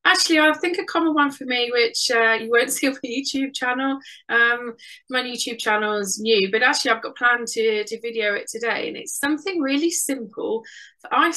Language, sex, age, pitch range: English, female, 20-39, 220-280 Hz